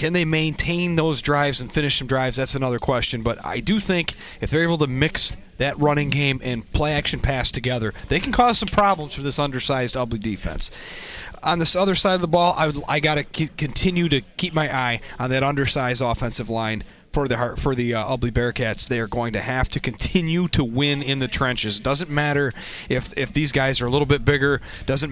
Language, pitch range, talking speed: English, 125-155 Hz, 215 wpm